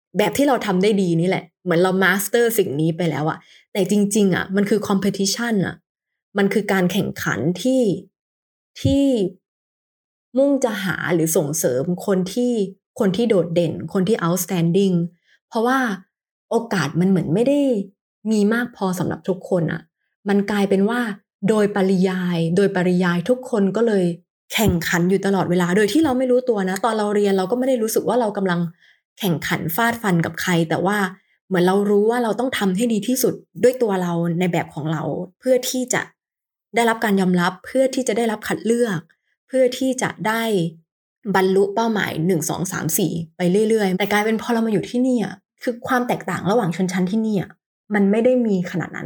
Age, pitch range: 20-39, 180-230 Hz